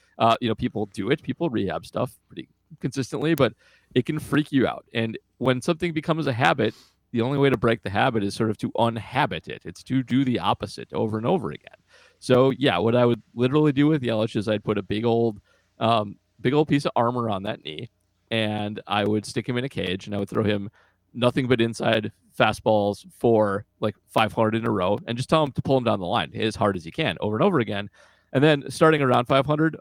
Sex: male